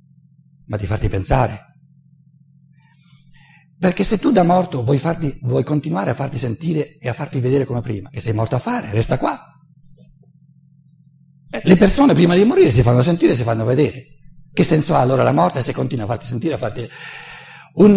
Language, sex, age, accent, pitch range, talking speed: Italian, male, 60-79, native, 120-150 Hz, 185 wpm